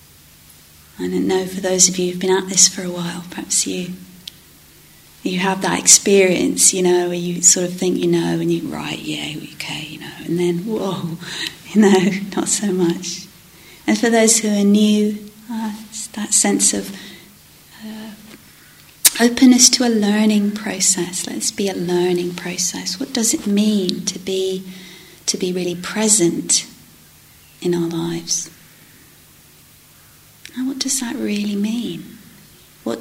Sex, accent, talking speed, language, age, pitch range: female, British, 155 wpm, English, 40-59, 175-220 Hz